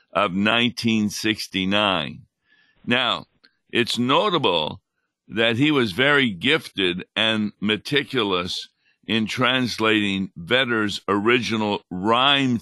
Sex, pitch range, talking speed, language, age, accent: male, 100-125 Hz, 80 wpm, English, 60-79, American